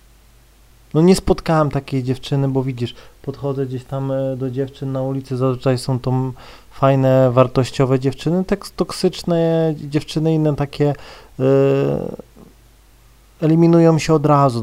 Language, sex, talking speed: Polish, male, 120 wpm